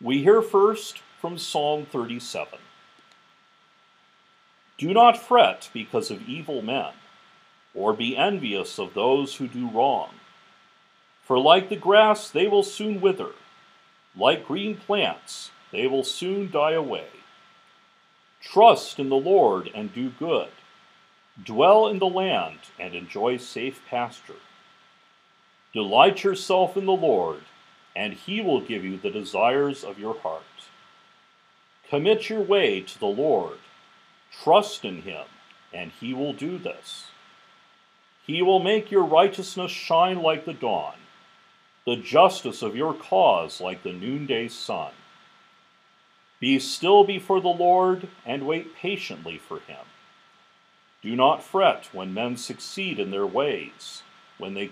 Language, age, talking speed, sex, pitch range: English, 50-69, 130 wpm, male, 135-205 Hz